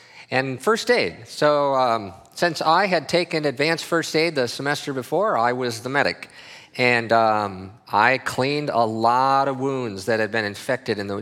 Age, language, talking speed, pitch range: 50-69, English, 175 wpm, 115-150 Hz